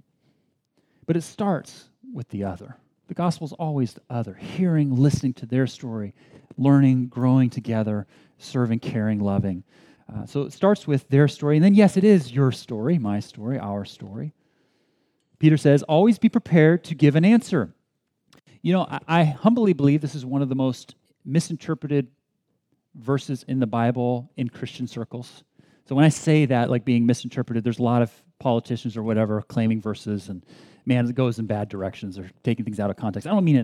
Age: 40-59